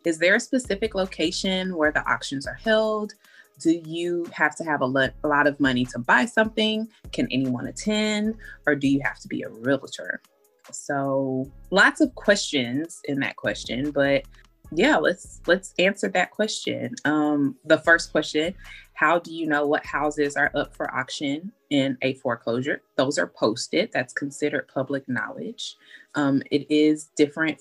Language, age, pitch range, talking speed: English, 20-39, 135-170 Hz, 165 wpm